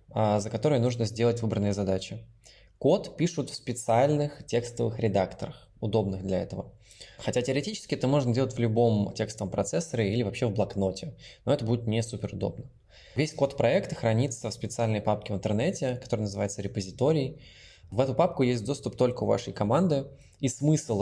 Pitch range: 105-125 Hz